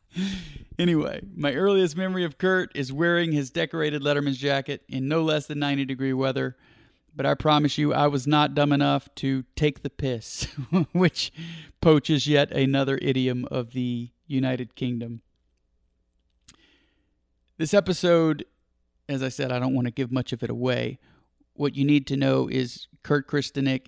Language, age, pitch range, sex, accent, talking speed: English, 40-59, 130-145 Hz, male, American, 160 wpm